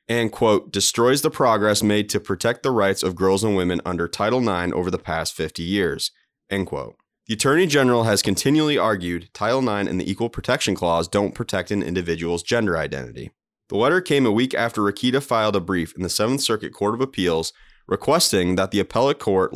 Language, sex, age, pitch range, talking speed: English, male, 30-49, 95-125 Hz, 200 wpm